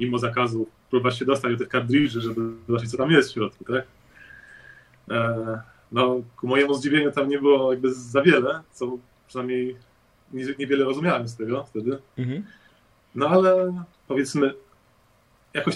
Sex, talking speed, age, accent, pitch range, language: male, 140 wpm, 20-39, native, 115-135 Hz, Polish